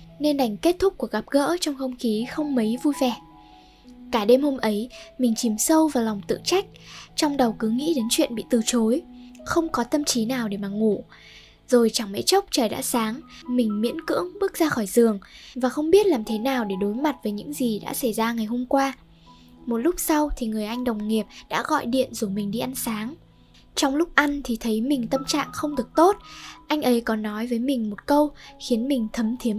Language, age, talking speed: Vietnamese, 10-29, 230 wpm